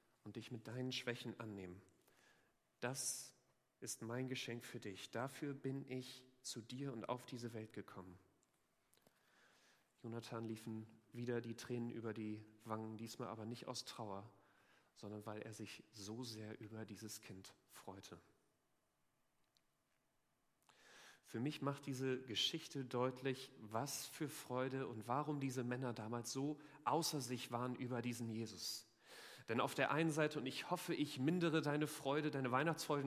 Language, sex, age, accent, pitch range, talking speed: German, male, 40-59, German, 115-145 Hz, 145 wpm